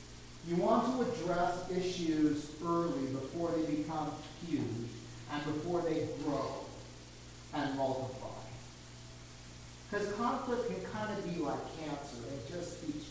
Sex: male